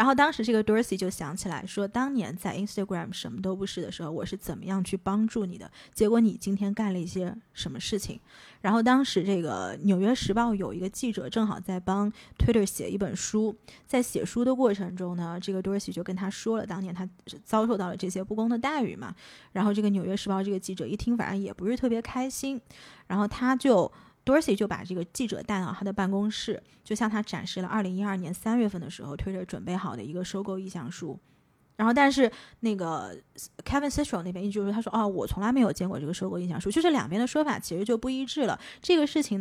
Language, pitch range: Chinese, 185-225 Hz